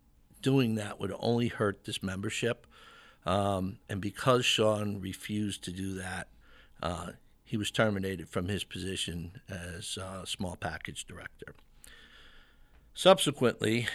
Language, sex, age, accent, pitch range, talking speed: English, male, 50-69, American, 95-115 Hz, 125 wpm